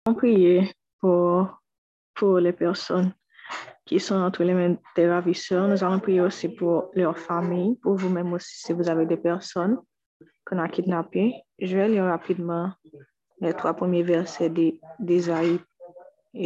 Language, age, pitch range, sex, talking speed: French, 20-39, 175-195 Hz, female, 145 wpm